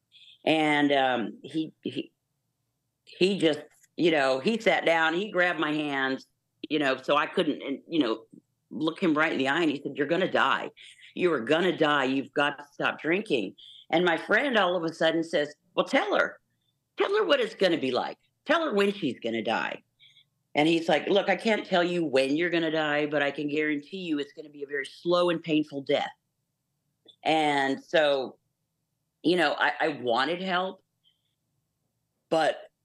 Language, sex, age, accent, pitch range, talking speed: English, female, 50-69, American, 145-190 Hz, 195 wpm